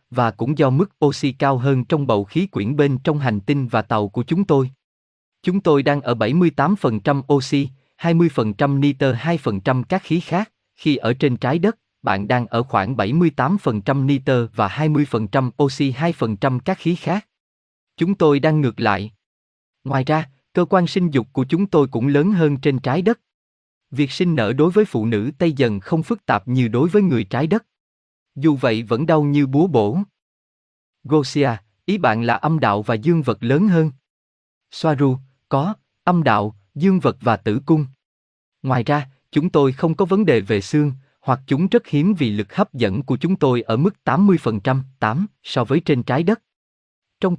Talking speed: 185 wpm